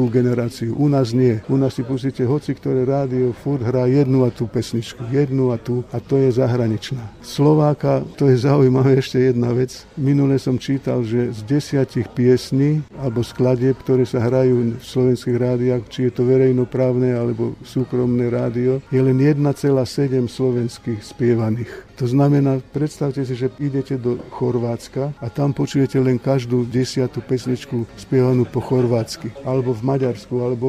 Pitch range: 125-140 Hz